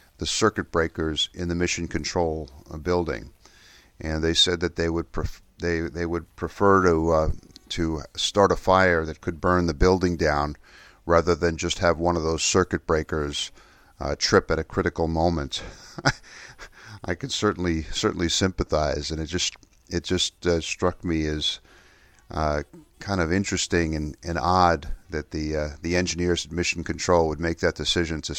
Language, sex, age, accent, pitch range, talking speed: English, male, 50-69, American, 80-90 Hz, 170 wpm